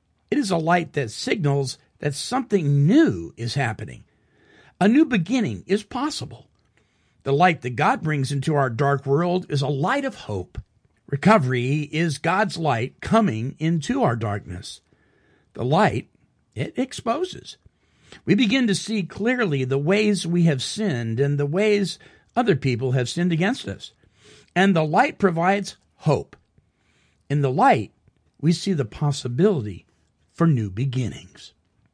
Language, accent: English, American